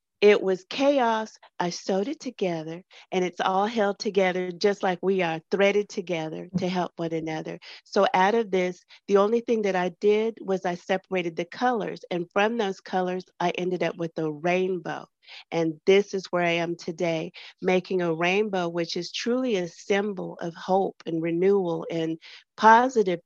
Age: 40-59